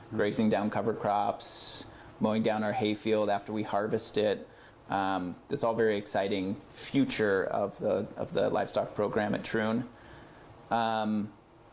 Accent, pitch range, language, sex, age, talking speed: American, 105-115 Hz, English, male, 30-49, 145 wpm